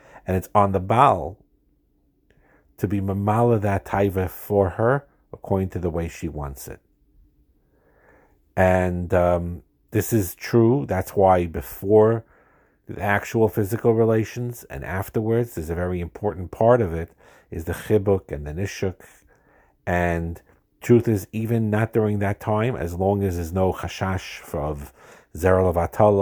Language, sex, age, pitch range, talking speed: English, male, 50-69, 85-105 Hz, 140 wpm